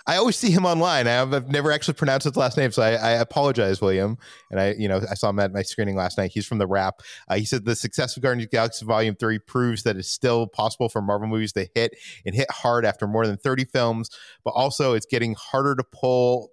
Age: 30-49